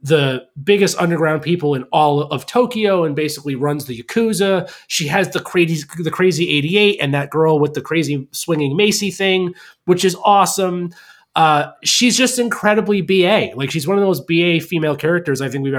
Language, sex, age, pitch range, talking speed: English, male, 30-49, 145-195 Hz, 180 wpm